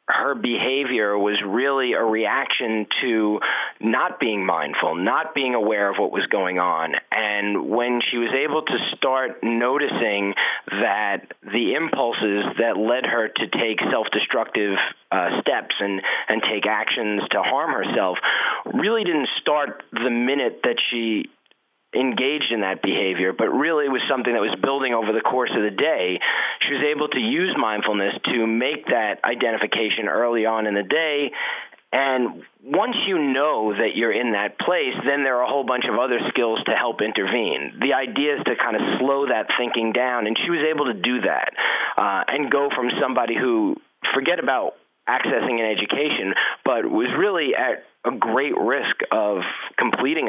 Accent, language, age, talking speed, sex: American, English, 30-49, 170 wpm, male